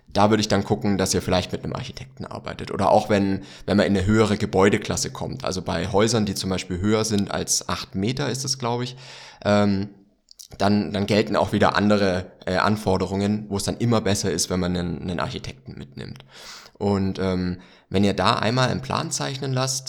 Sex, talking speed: male, 200 wpm